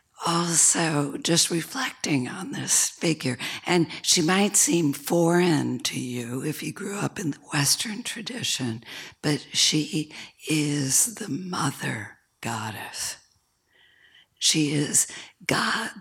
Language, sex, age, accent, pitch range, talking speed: English, female, 60-79, American, 135-170 Hz, 110 wpm